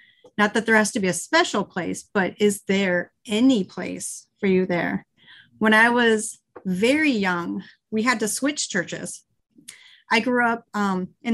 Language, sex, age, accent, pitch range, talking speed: English, female, 30-49, American, 195-245 Hz, 170 wpm